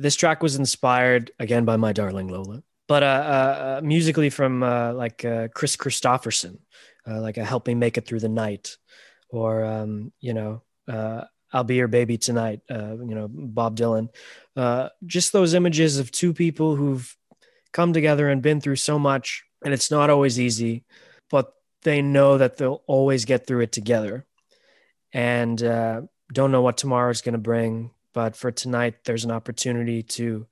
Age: 20-39